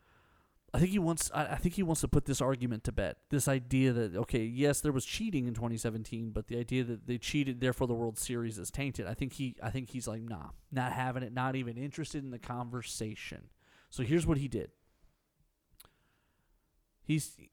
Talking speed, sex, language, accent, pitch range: 205 wpm, male, English, American, 115-145 Hz